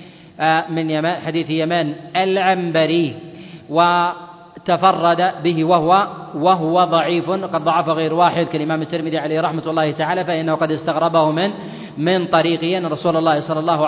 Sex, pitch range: male, 160-180 Hz